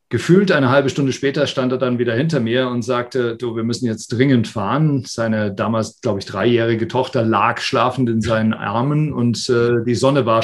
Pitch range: 115-135 Hz